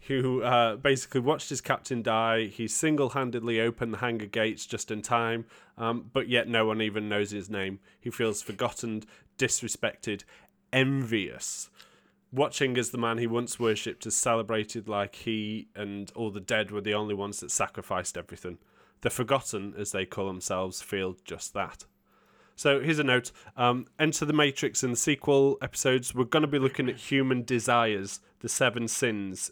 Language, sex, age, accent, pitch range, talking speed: English, male, 20-39, British, 105-130 Hz, 170 wpm